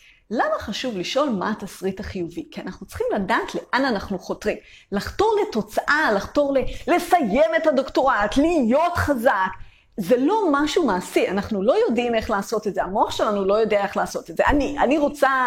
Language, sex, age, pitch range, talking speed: Hebrew, female, 30-49, 195-290 Hz, 165 wpm